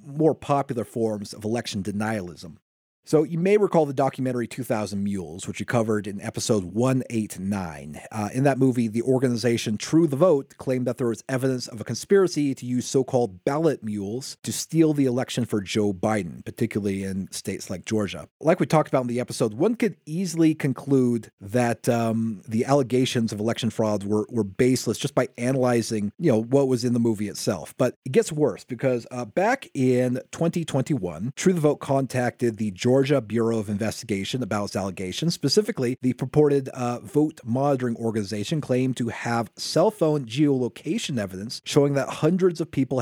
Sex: male